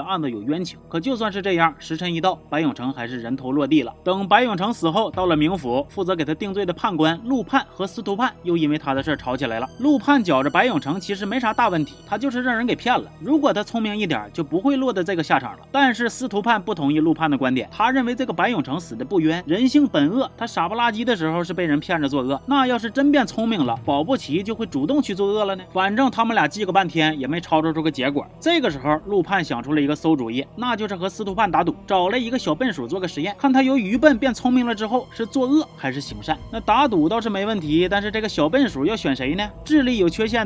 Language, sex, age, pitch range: Chinese, male, 30-49, 160-240 Hz